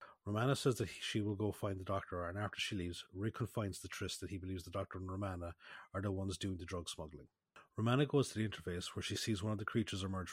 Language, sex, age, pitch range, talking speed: English, male, 30-49, 95-110 Hz, 260 wpm